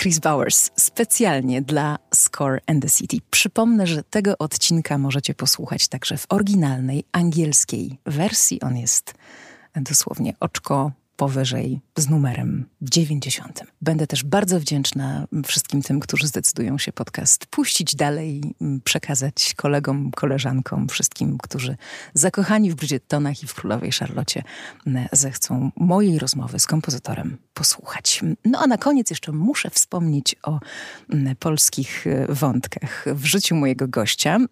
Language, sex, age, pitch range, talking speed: Polish, female, 30-49, 135-170 Hz, 125 wpm